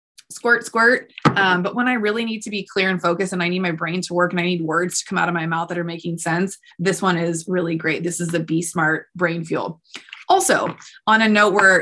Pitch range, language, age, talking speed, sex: 170-215 Hz, English, 20-39, 260 wpm, female